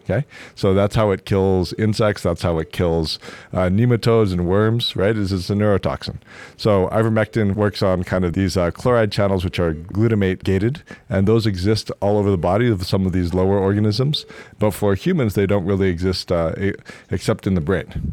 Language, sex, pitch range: English, male, 90-105 Hz